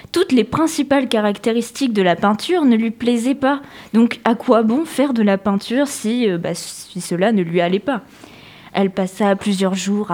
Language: French